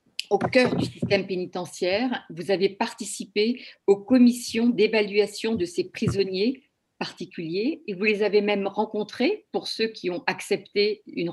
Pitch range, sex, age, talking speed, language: 180-240 Hz, female, 50-69, 145 wpm, French